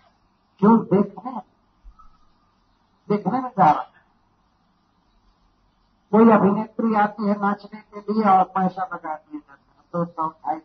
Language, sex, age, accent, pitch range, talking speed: Hindi, male, 50-69, native, 165-210 Hz, 105 wpm